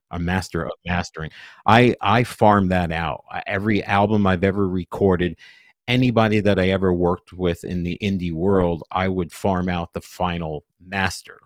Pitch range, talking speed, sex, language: 90-110 Hz, 160 wpm, male, English